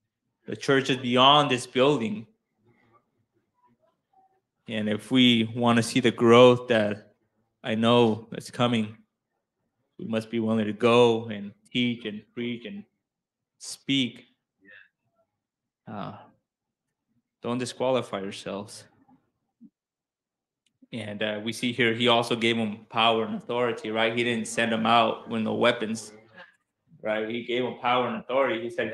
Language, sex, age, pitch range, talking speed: English, male, 20-39, 115-135 Hz, 135 wpm